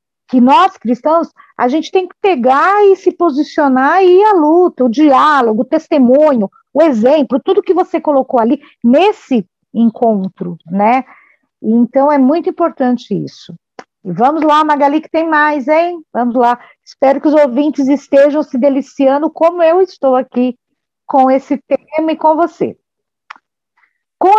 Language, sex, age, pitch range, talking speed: Portuguese, female, 50-69, 235-300 Hz, 150 wpm